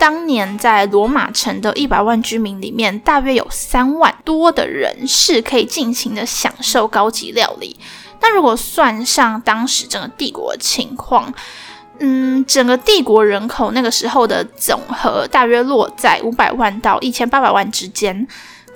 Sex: female